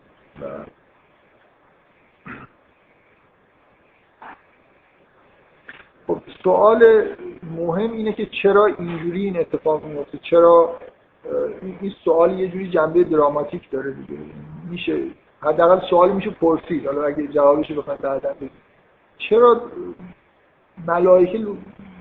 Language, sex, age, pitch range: Persian, male, 50-69, 150-195 Hz